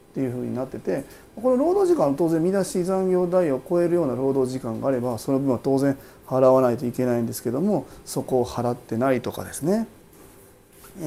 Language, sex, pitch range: Japanese, male, 125-170 Hz